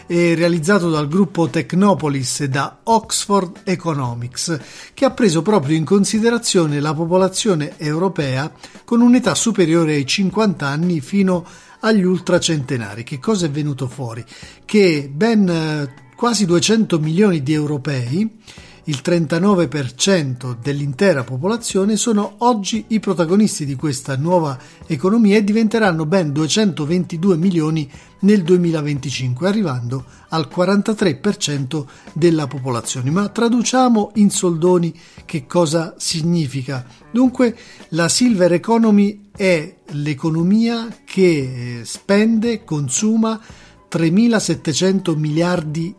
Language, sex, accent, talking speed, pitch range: Italian, male, native, 105 wpm, 145-195 Hz